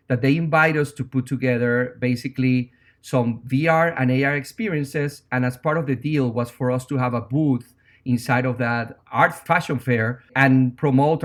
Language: English